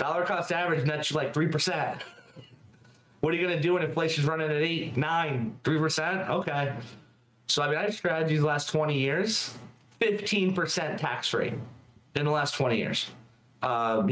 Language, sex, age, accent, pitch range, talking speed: English, male, 30-49, American, 115-155 Hz, 170 wpm